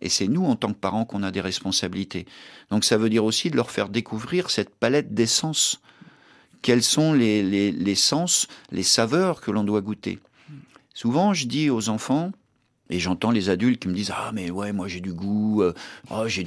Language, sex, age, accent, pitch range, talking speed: French, male, 50-69, French, 105-145 Hz, 210 wpm